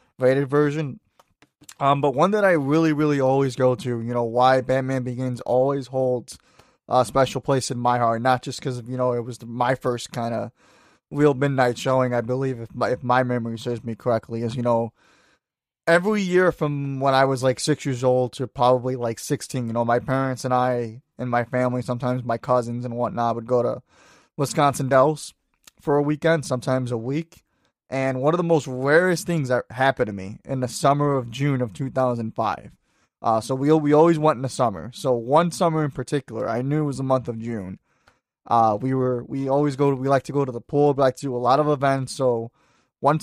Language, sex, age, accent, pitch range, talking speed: English, male, 20-39, American, 125-145 Hz, 215 wpm